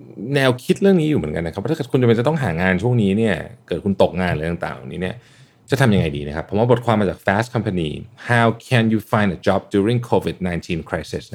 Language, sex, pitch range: Thai, male, 95-135 Hz